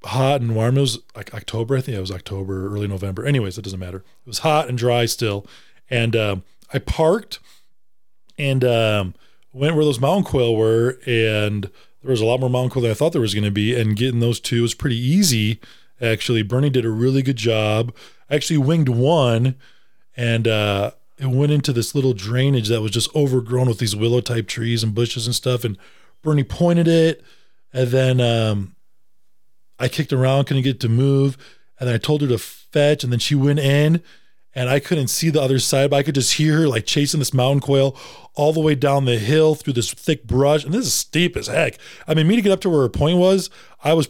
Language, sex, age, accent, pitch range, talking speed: English, male, 20-39, American, 115-145 Hz, 225 wpm